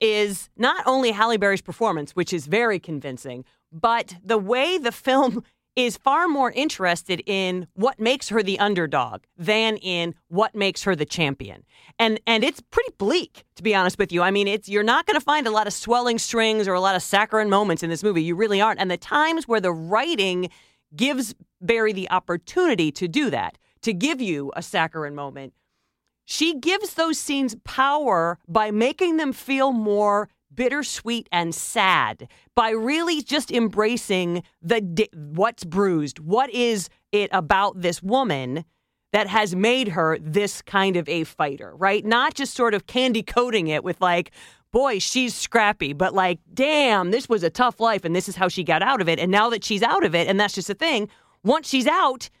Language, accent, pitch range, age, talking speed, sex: English, American, 180-240 Hz, 40-59, 190 wpm, female